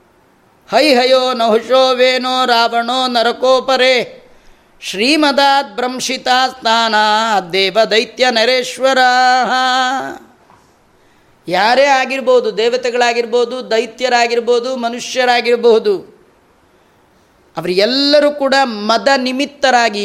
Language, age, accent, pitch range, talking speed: Kannada, 30-49, native, 220-265 Hz, 65 wpm